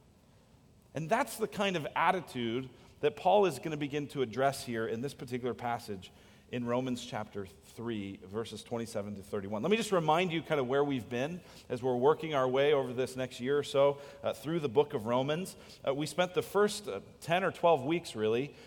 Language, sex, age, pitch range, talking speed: English, male, 40-59, 125-185 Hz, 210 wpm